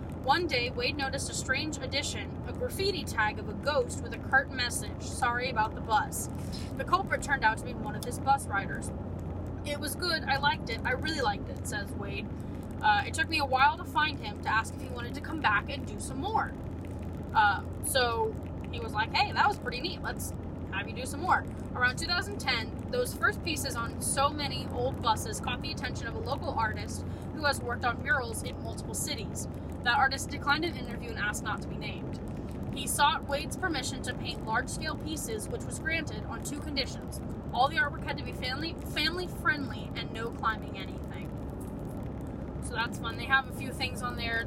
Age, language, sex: 10-29, English, female